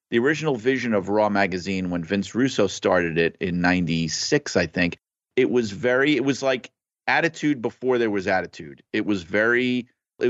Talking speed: 175 wpm